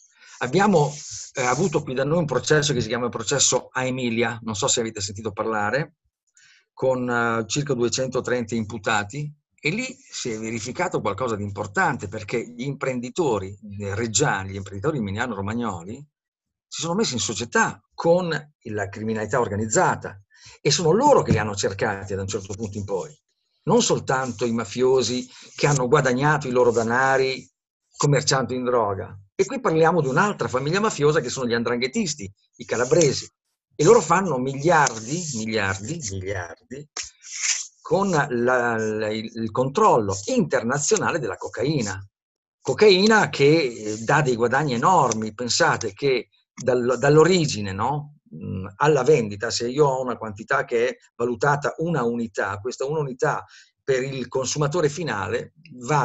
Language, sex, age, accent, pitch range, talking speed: Italian, male, 50-69, native, 110-150 Hz, 145 wpm